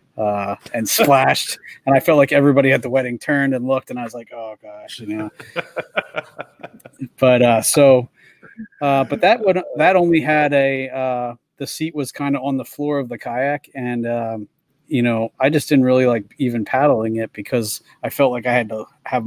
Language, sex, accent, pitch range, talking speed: English, male, American, 115-135 Hz, 200 wpm